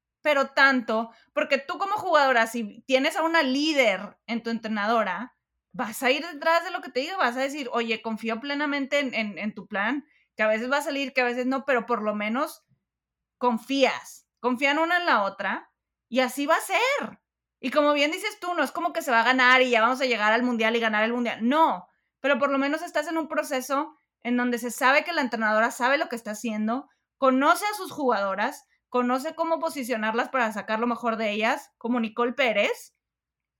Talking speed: 215 wpm